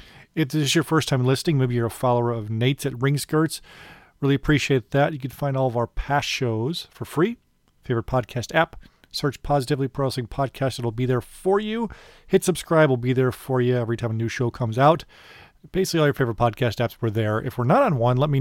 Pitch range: 120-150 Hz